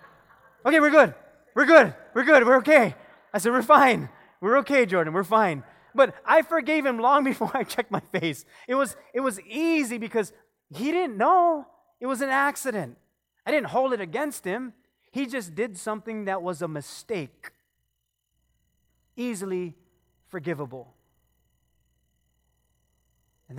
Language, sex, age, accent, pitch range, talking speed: English, male, 30-49, American, 145-235 Hz, 145 wpm